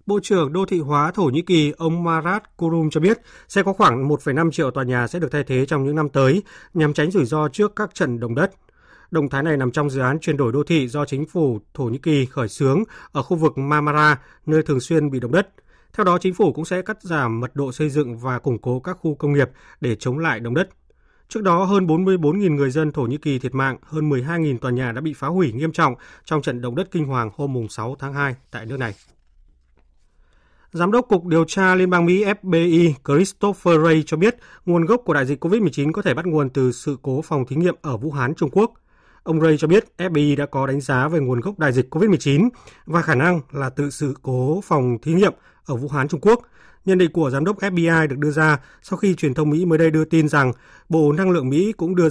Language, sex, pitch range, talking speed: Vietnamese, male, 135-175 Hz, 250 wpm